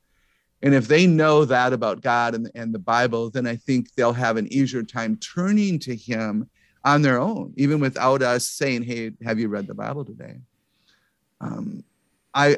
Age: 50-69